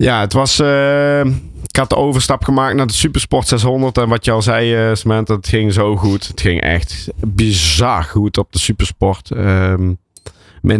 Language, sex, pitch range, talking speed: Dutch, male, 95-110 Hz, 190 wpm